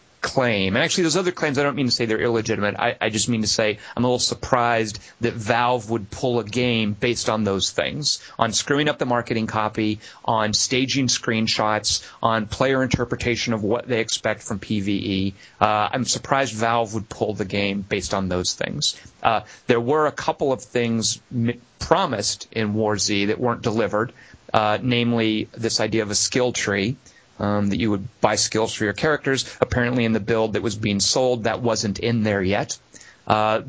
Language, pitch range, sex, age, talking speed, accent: English, 105-130 Hz, male, 30-49, 190 wpm, American